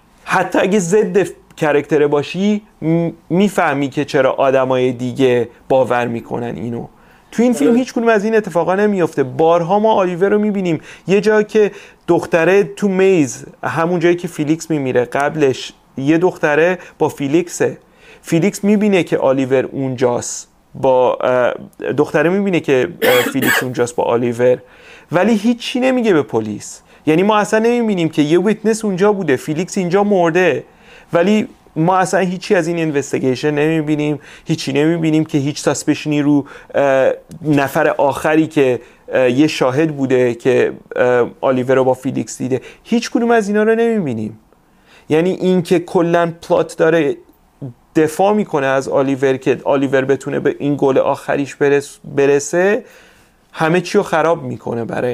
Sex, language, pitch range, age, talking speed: male, Persian, 140-200 Hz, 30-49, 140 wpm